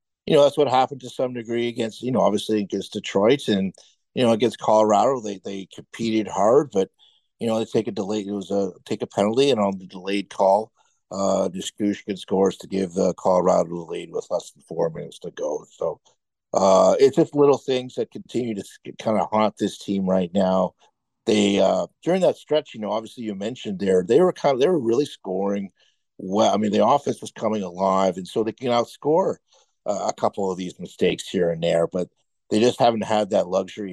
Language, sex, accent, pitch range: English, male, American, 95-125 Hz